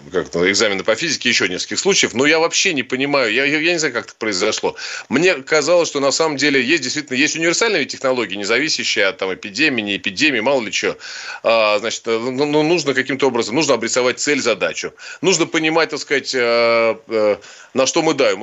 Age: 30-49